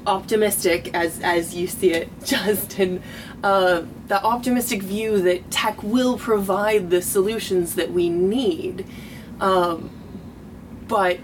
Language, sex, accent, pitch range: English, female, American, 170-205 Hz